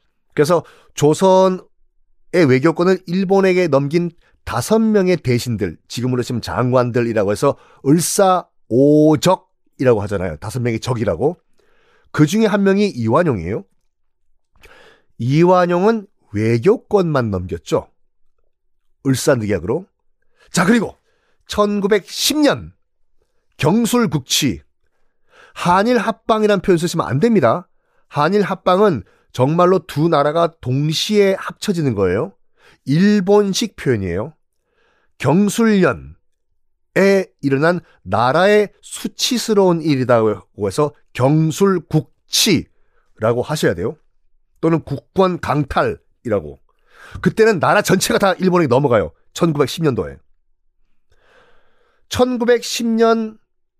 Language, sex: Korean, male